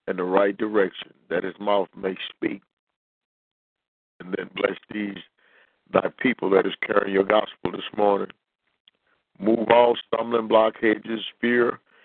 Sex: male